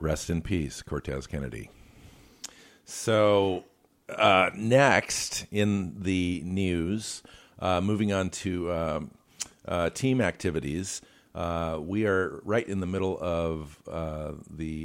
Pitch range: 75-90 Hz